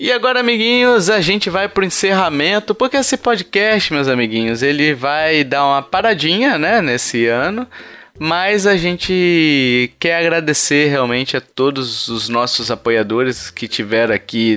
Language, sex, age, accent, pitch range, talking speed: Portuguese, male, 20-39, Brazilian, 120-155 Hz, 150 wpm